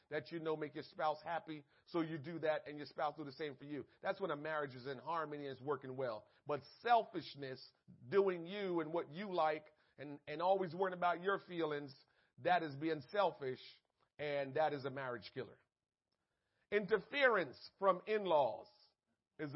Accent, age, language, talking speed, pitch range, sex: American, 40-59, English, 180 wpm, 155-195 Hz, male